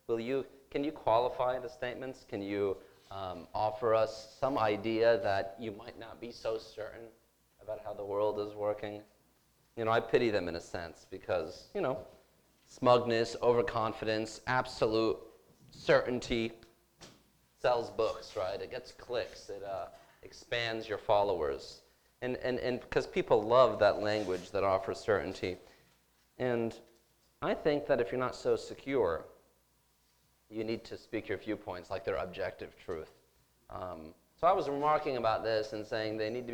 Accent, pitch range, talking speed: American, 105-130 Hz, 155 wpm